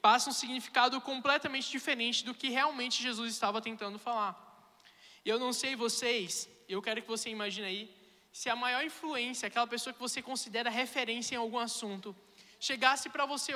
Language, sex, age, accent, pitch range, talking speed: Portuguese, male, 20-39, Brazilian, 220-260 Hz, 170 wpm